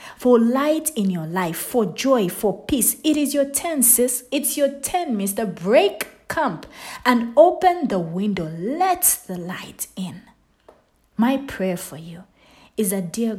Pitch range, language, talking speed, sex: 180-255 Hz, English, 155 wpm, female